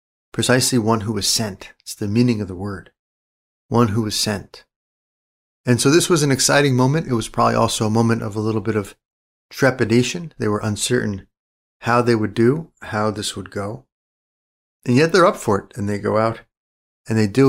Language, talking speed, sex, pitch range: English, 200 wpm, male, 100-125 Hz